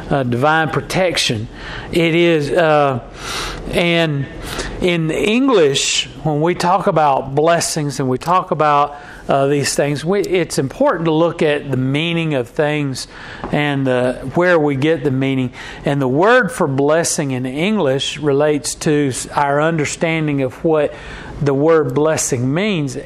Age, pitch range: 40-59, 140-170 Hz